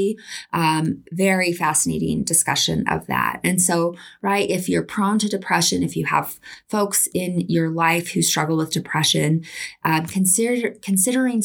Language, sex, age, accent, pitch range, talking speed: English, female, 20-39, American, 165-210 Hz, 140 wpm